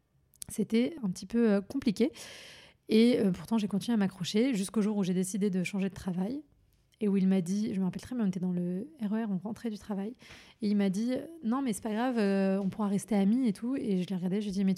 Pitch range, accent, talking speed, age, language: 195-225 Hz, French, 255 wpm, 30-49, French